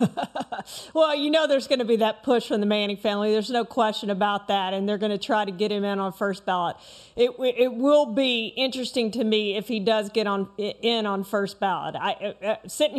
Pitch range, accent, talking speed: 220-275 Hz, American, 225 wpm